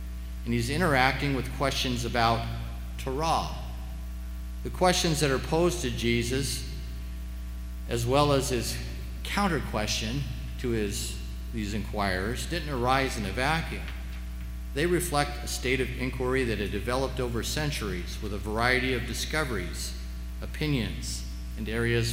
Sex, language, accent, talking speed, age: male, English, American, 130 wpm, 50-69